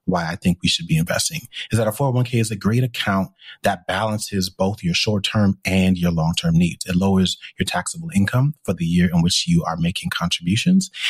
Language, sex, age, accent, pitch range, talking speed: English, male, 30-49, American, 95-130 Hz, 215 wpm